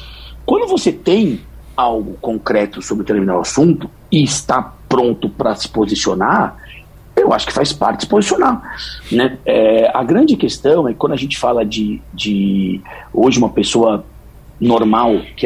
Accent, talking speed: Brazilian, 150 wpm